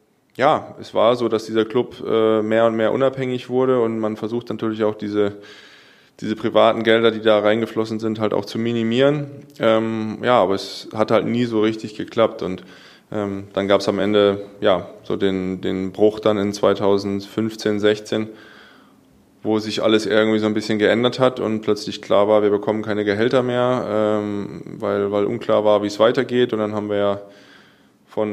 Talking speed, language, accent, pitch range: 185 wpm, German, German, 100-110 Hz